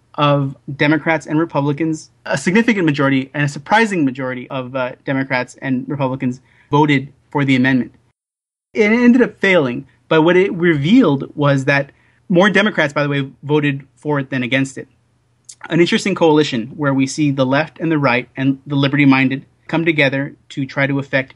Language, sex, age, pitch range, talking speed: English, male, 30-49, 130-150 Hz, 175 wpm